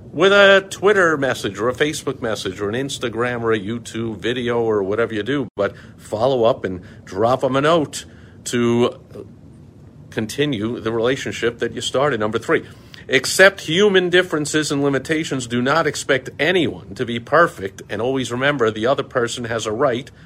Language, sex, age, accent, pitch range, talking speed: English, male, 50-69, American, 125-160 Hz, 170 wpm